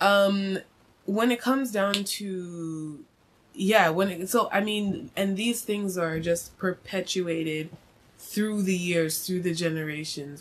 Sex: female